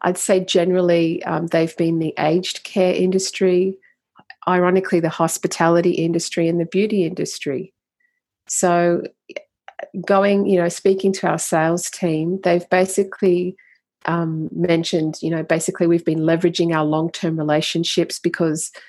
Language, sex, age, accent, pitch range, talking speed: English, female, 40-59, Australian, 155-185 Hz, 130 wpm